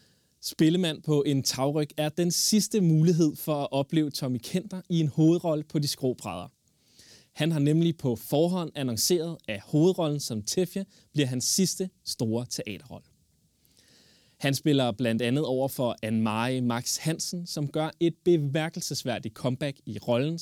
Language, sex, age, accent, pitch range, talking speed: Danish, male, 20-39, native, 120-170 Hz, 150 wpm